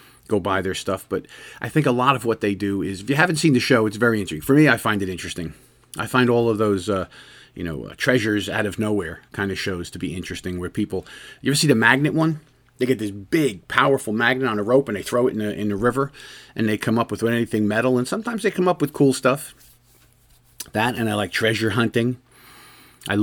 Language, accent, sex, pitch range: English, American, male, 95-125 Hz